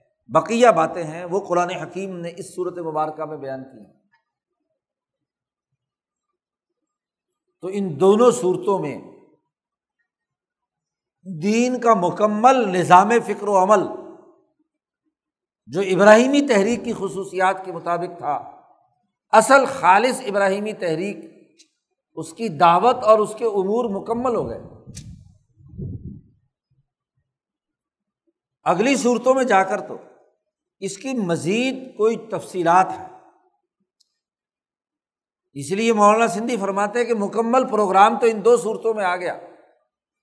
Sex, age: male, 60-79